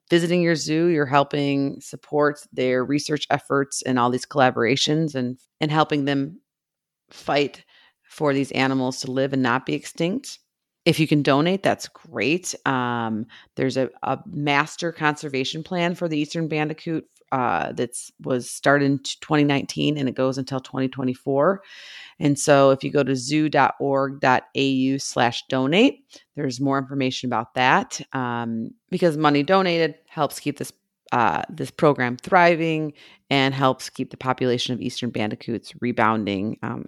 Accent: American